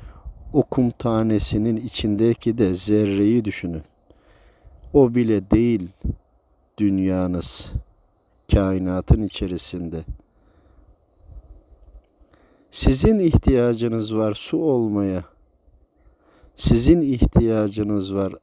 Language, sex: Turkish, male